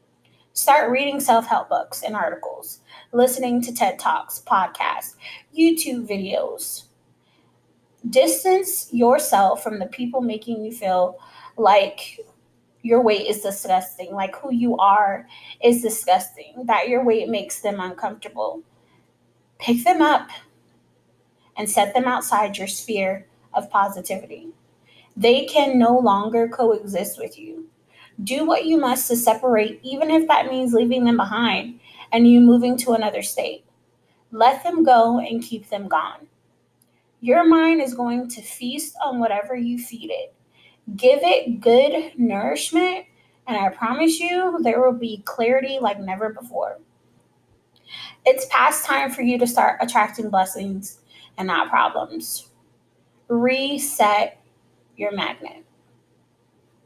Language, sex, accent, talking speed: English, female, American, 130 wpm